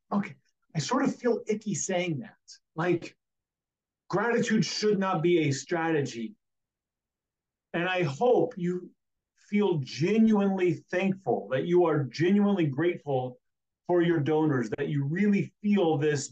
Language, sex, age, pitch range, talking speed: English, male, 40-59, 125-180 Hz, 130 wpm